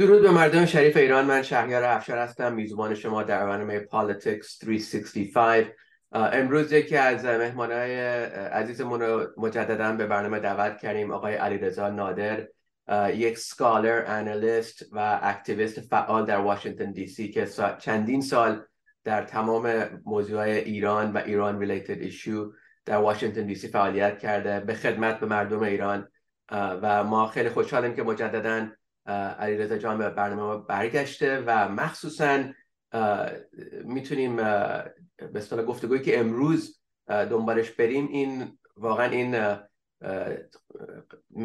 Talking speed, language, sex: 135 wpm, English, male